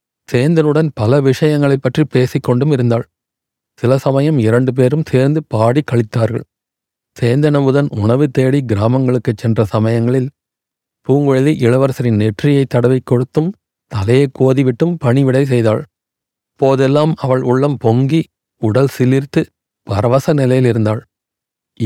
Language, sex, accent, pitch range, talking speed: Tamil, male, native, 120-145 Hz, 100 wpm